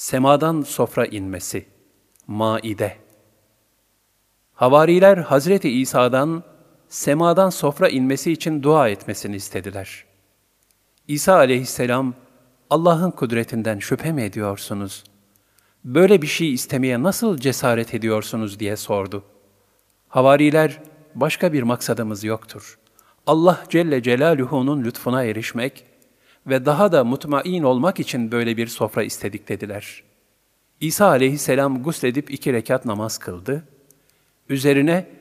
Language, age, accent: Turkish, 50-69, native